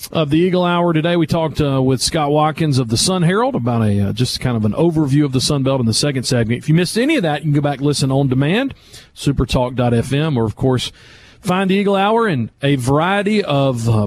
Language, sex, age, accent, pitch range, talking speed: English, male, 40-59, American, 135-180 Hz, 250 wpm